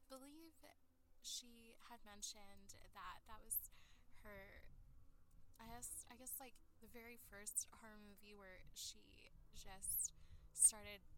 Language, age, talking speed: English, 10-29, 120 wpm